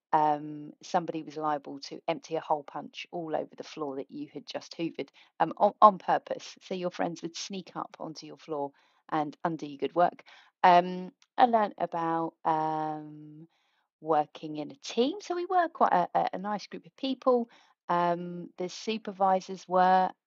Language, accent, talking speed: English, British, 170 wpm